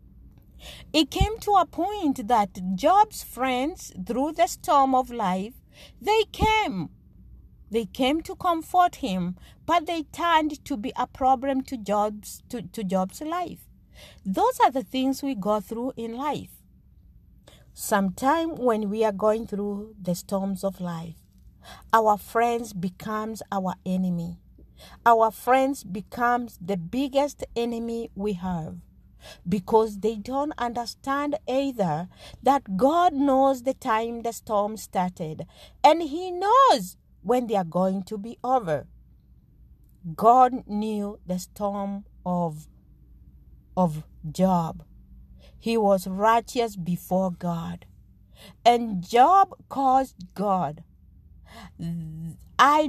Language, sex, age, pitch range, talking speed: English, female, 50-69, 185-270 Hz, 115 wpm